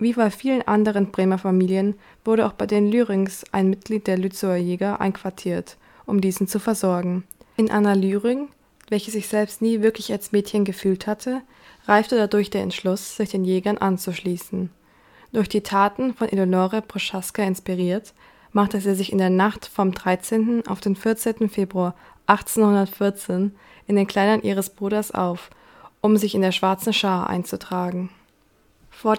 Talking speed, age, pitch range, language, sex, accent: 155 wpm, 20-39, 185-215 Hz, German, female, German